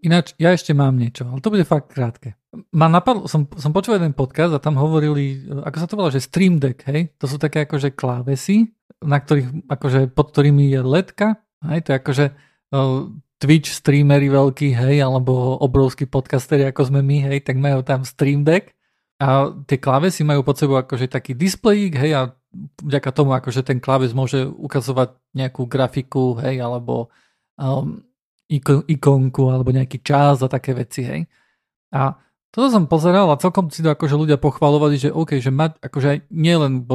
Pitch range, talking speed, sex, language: 135-155 Hz, 180 wpm, male, Slovak